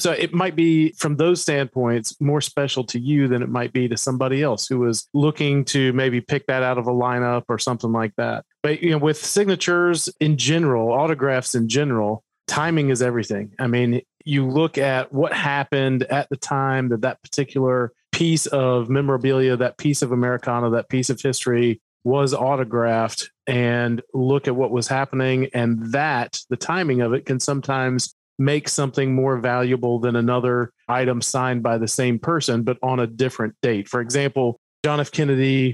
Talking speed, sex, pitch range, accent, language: 180 wpm, male, 125-145 Hz, American, English